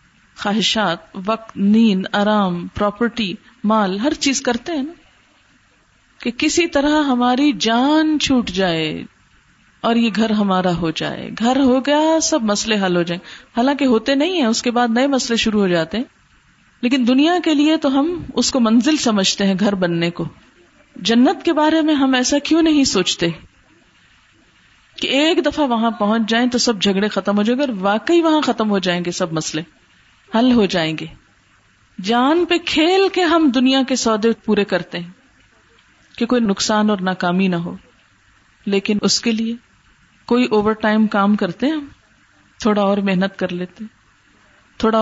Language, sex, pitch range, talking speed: Urdu, female, 190-260 Hz, 170 wpm